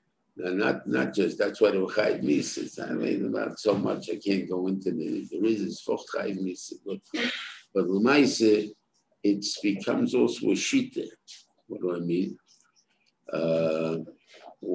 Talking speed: 140 wpm